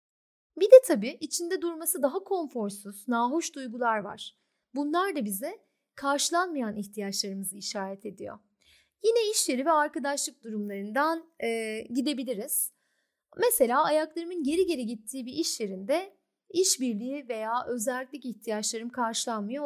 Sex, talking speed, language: female, 115 wpm, Turkish